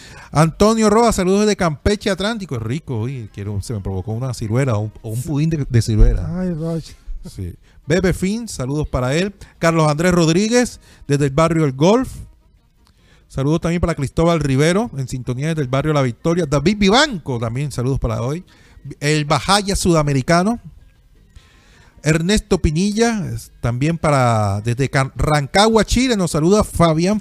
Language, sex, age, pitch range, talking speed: Spanish, male, 40-59, 135-195 Hz, 145 wpm